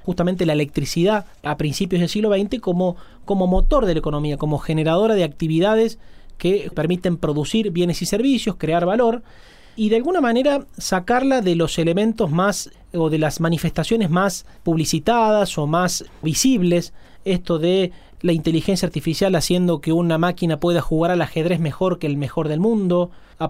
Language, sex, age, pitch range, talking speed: Spanish, male, 30-49, 165-220 Hz, 165 wpm